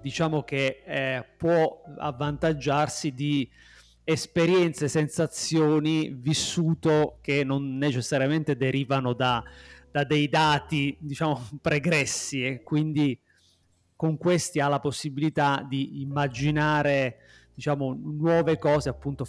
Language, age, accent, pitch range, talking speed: Italian, 30-49, native, 130-155 Hz, 100 wpm